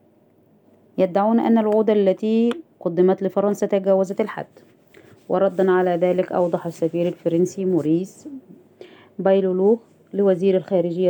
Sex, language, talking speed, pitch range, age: female, Arabic, 95 wpm, 175-195 Hz, 20-39